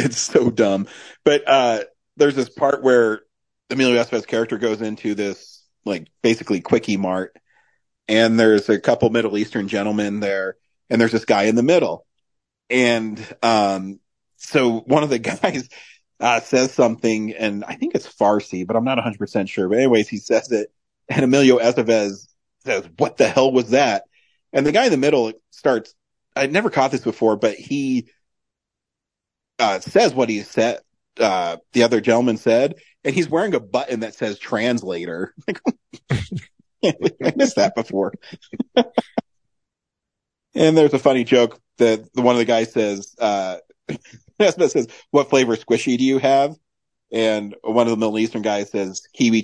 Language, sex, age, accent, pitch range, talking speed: English, male, 40-59, American, 105-130 Hz, 165 wpm